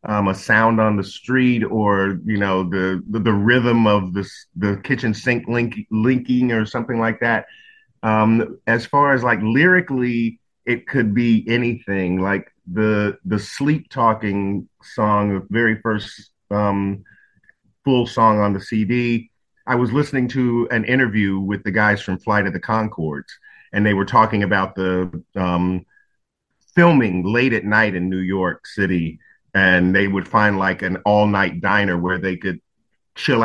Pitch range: 100-120 Hz